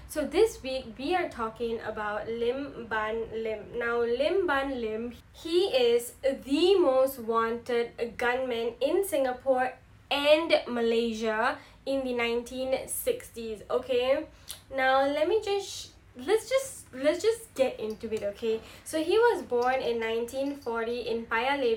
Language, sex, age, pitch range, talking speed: English, female, 10-29, 235-300 Hz, 125 wpm